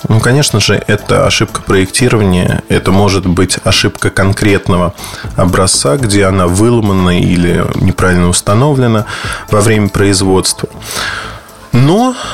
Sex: male